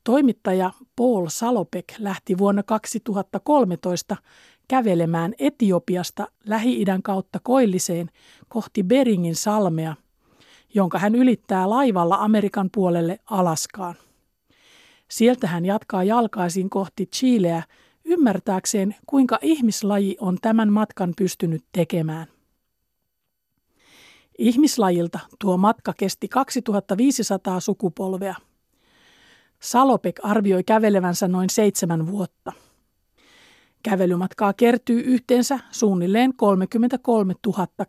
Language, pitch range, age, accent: Finnish, 180-235 Hz, 50-69, native